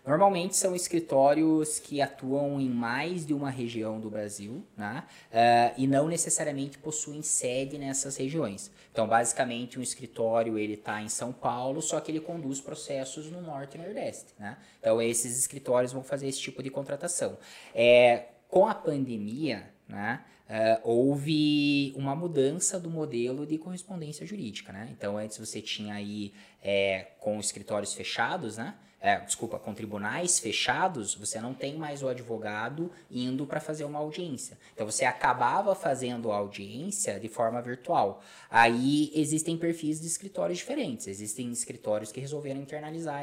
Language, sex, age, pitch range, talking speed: Portuguese, male, 20-39, 115-155 Hz, 155 wpm